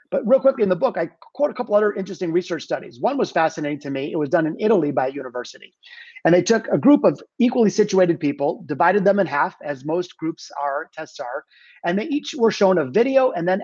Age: 30-49